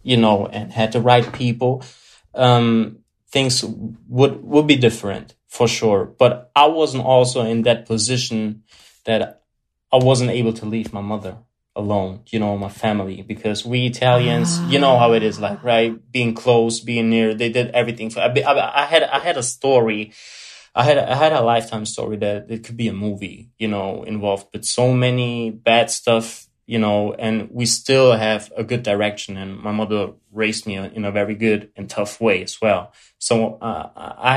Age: 20-39